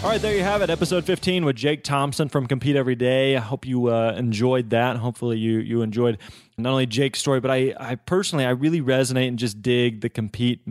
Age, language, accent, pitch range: 20-39, English, American, 115-140 Hz